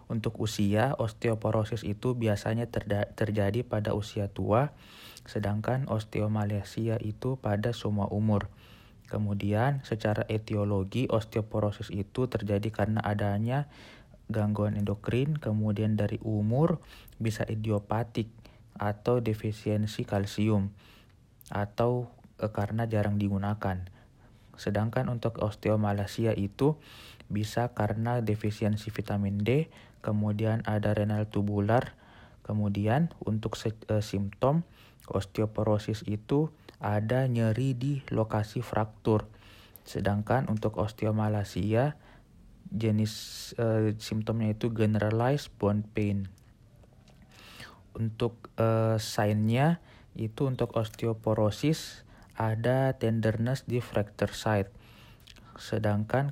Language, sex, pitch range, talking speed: Indonesian, male, 105-120 Hz, 90 wpm